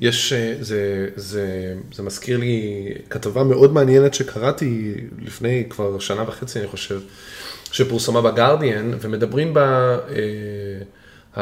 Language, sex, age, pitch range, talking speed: Hebrew, male, 20-39, 110-135 Hz, 115 wpm